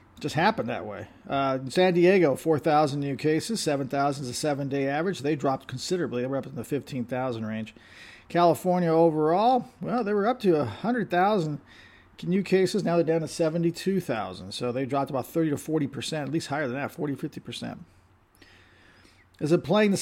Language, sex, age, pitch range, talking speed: English, male, 40-59, 125-160 Hz, 175 wpm